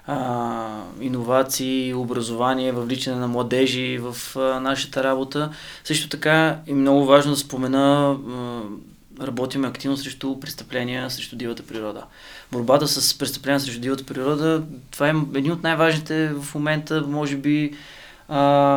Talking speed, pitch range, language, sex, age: 120 wpm, 125-145 Hz, Bulgarian, male, 20-39